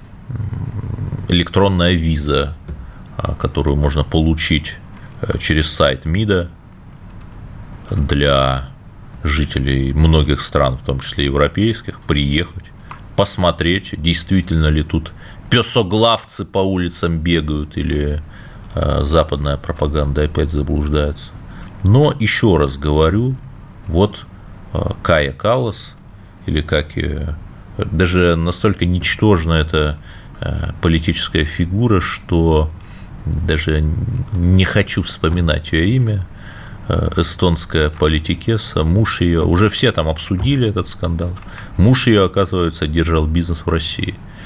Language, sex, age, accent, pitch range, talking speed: Russian, male, 30-49, native, 80-105 Hz, 95 wpm